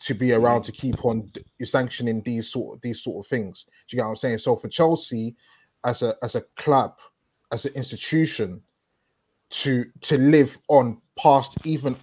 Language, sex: English, male